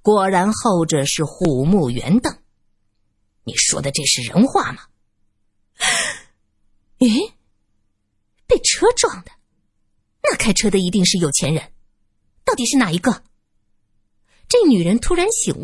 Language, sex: Chinese, female